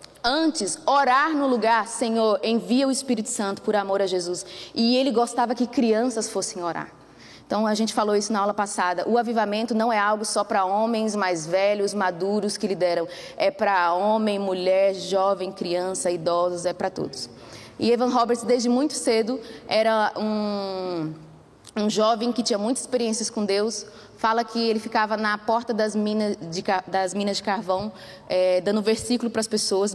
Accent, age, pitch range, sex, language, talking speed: Brazilian, 20-39, 190-225 Hz, female, Portuguese, 165 wpm